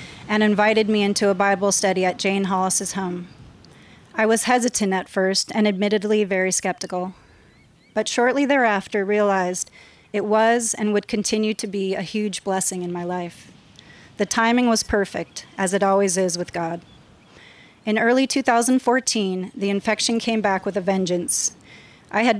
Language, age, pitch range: English, 30-49, 190-215 Hz